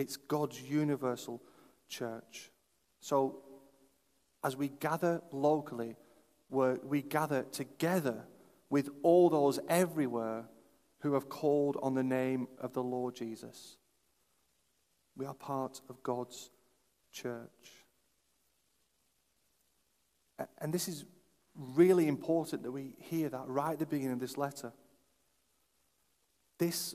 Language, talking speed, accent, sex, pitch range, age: English, 110 wpm, British, male, 130-155 Hz, 40-59